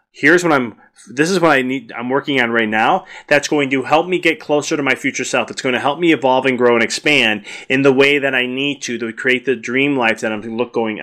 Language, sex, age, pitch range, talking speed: English, male, 20-39, 115-140 Hz, 265 wpm